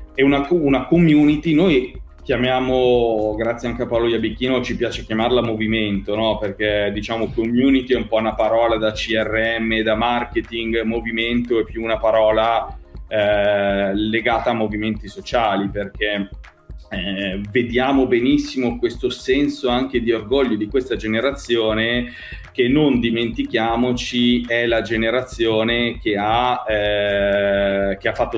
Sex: male